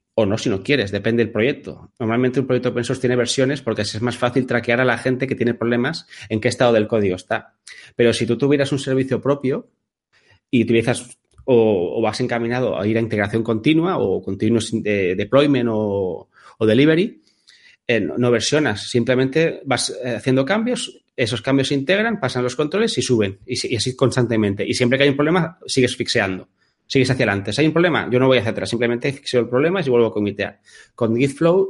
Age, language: 30-49, Spanish